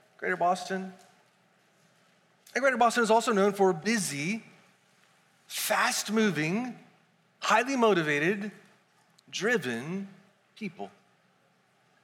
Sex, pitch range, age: male, 175-210 Hz, 40-59